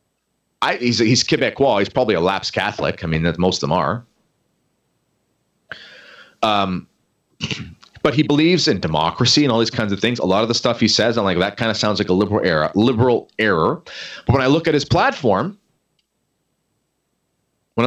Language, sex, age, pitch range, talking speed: English, male, 30-49, 95-135 Hz, 185 wpm